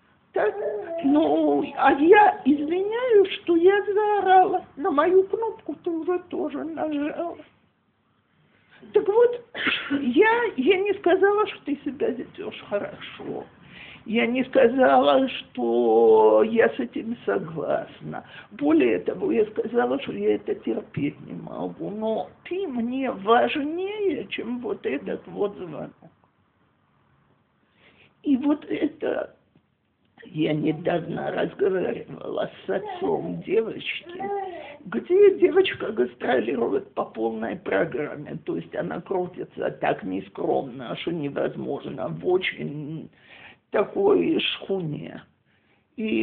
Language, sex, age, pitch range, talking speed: Russian, male, 50-69, 230-385 Hz, 105 wpm